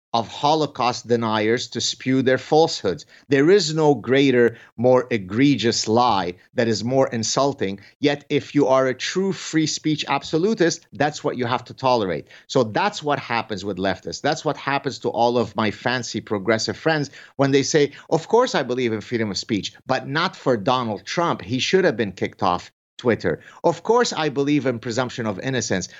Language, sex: English, male